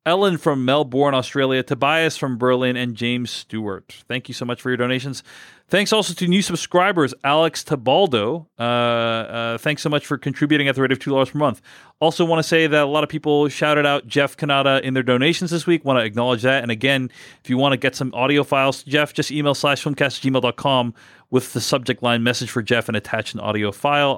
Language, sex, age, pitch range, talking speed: English, male, 40-59, 120-155 Hz, 220 wpm